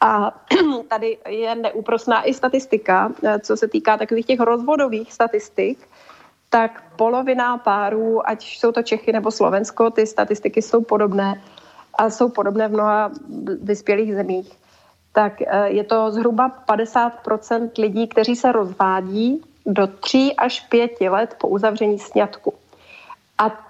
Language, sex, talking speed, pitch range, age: Slovak, female, 130 wpm, 205-230 Hz, 30-49